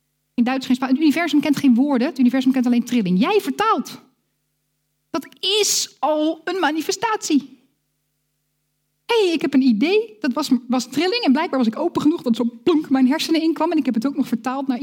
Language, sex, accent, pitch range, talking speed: Dutch, female, Dutch, 205-280 Hz, 205 wpm